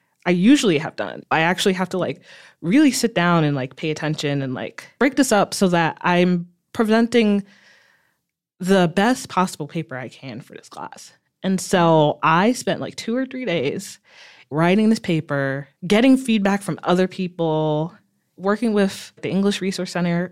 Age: 20-39